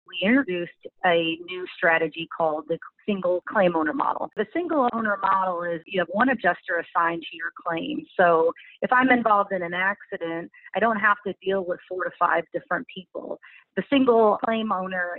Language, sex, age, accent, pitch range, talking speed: English, female, 30-49, American, 175-220 Hz, 180 wpm